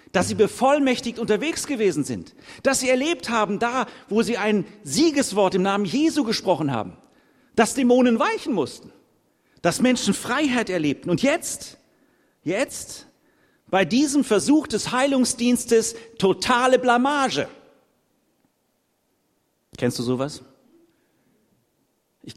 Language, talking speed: German, 115 wpm